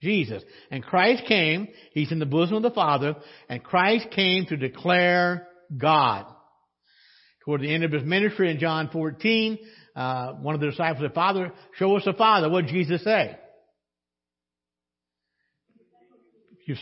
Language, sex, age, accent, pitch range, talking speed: English, male, 60-79, American, 150-205 Hz, 150 wpm